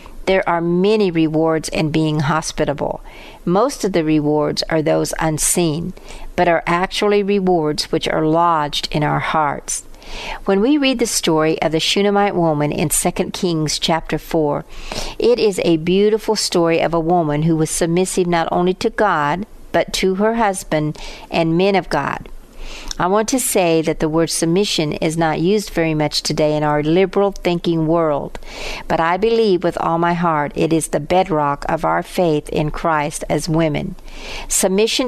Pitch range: 155-195 Hz